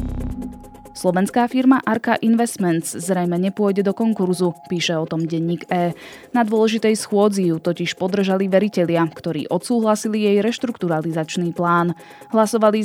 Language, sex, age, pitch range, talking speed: Slovak, female, 20-39, 165-210 Hz, 120 wpm